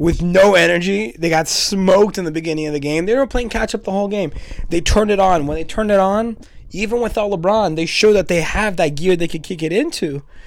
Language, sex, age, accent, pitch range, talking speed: English, male, 20-39, American, 135-185 Hz, 250 wpm